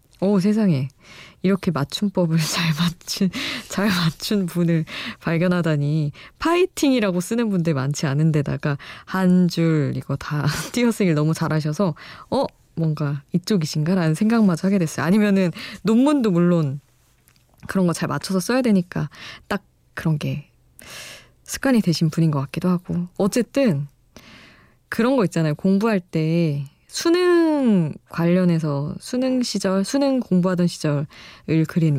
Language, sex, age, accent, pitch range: Korean, female, 20-39, native, 150-200 Hz